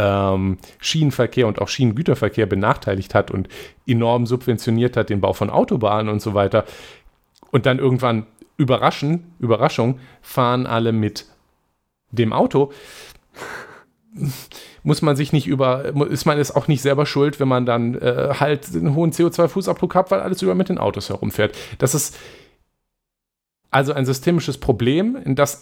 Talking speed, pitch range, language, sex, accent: 150 wpm, 115-150 Hz, German, male, German